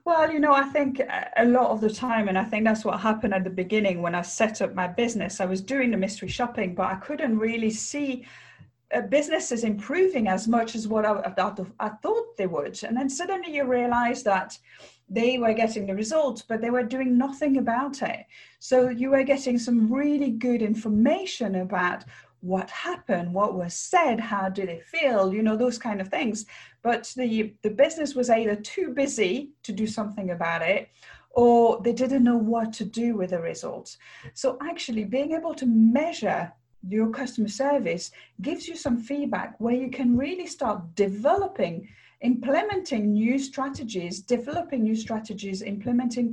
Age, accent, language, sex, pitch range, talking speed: 40-59, British, English, female, 205-265 Hz, 175 wpm